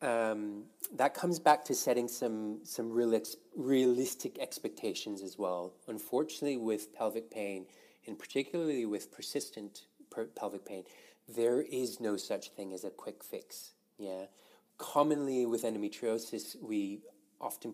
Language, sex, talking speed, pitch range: English, male, 135 wpm, 105-150 Hz